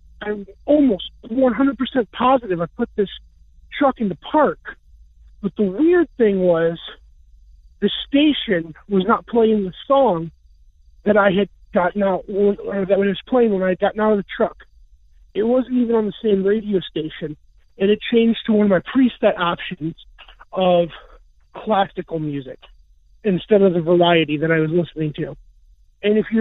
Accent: American